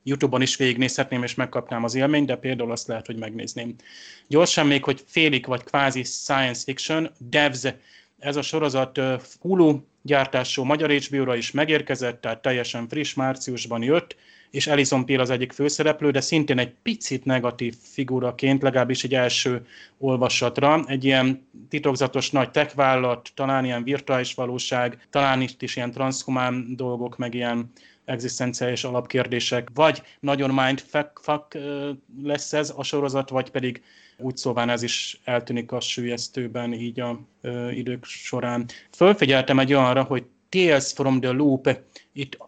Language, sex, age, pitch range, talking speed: Hungarian, male, 30-49, 125-140 Hz, 145 wpm